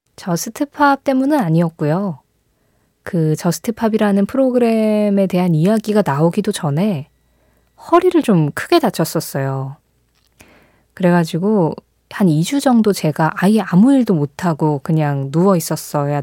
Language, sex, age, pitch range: Korean, female, 20-39, 155-220 Hz